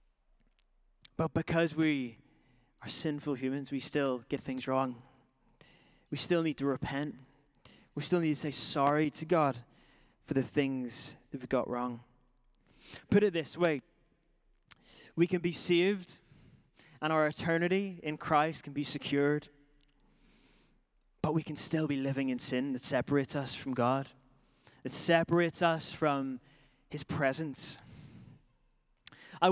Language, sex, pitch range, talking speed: English, male, 135-165 Hz, 135 wpm